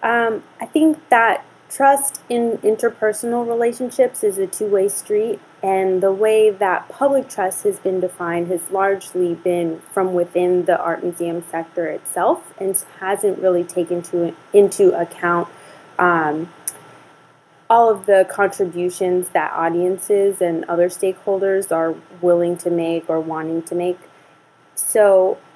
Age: 20-39